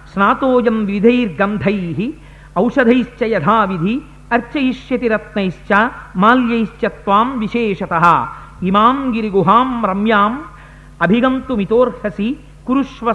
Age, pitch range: 50-69, 175-225 Hz